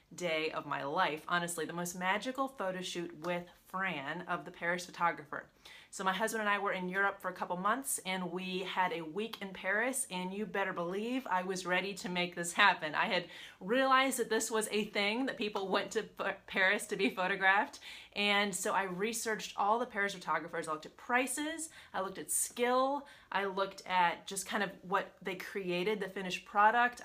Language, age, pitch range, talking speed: Vietnamese, 30-49, 180-215 Hz, 195 wpm